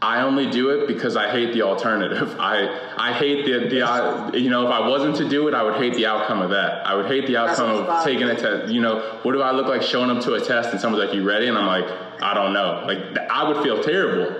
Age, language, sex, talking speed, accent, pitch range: 20-39, English, male, 275 wpm, American, 100-130 Hz